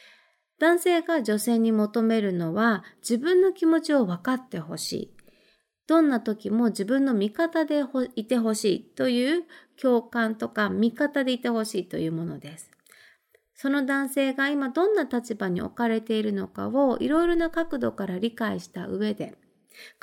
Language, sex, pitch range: Japanese, female, 210-310 Hz